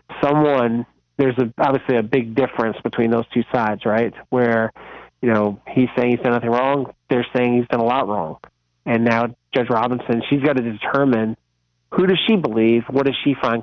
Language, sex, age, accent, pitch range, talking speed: English, male, 30-49, American, 115-125 Hz, 195 wpm